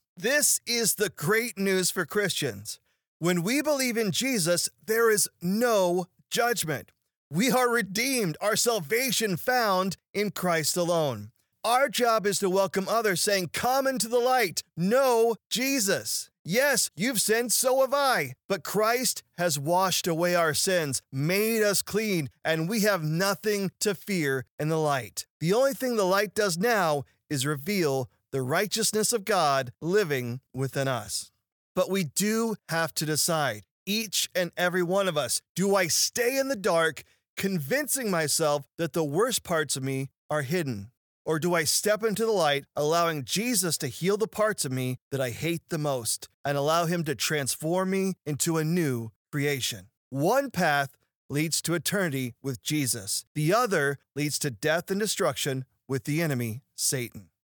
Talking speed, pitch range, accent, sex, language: 160 wpm, 145-210 Hz, American, male, English